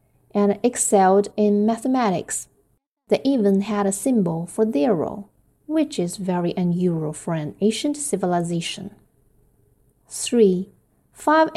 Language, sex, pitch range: Chinese, female, 175-220 Hz